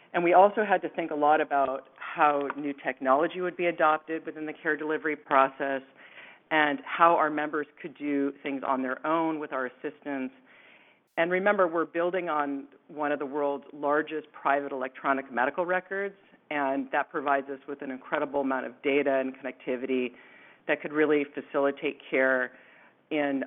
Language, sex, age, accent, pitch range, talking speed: English, female, 40-59, American, 135-155 Hz, 165 wpm